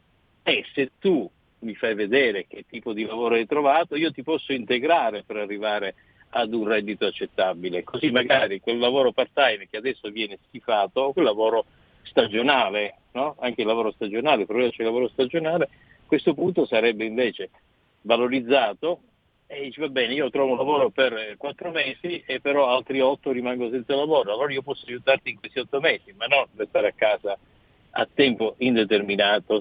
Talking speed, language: 170 wpm, Italian